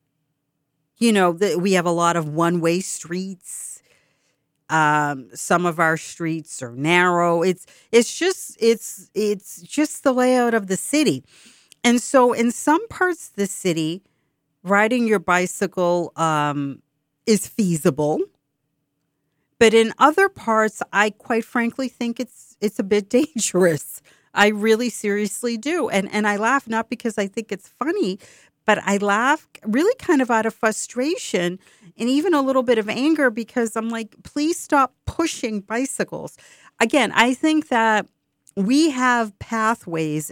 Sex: female